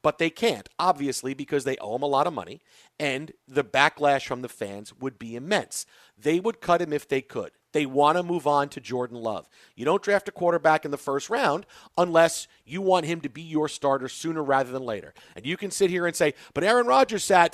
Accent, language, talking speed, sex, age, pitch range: American, English, 235 wpm, male, 40-59, 140-175 Hz